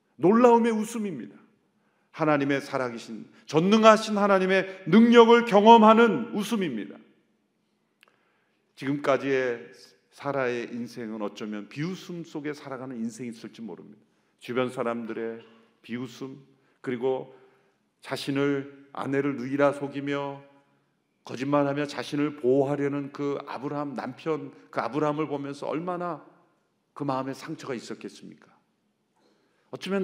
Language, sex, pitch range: Korean, male, 135-195 Hz